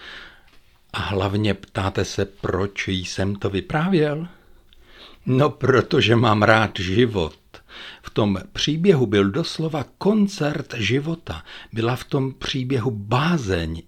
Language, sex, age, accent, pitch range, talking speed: Czech, male, 60-79, native, 100-135 Hz, 110 wpm